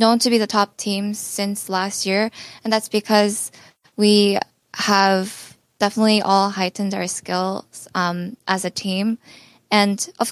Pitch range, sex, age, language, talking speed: 180-210 Hz, female, 10-29, English, 145 wpm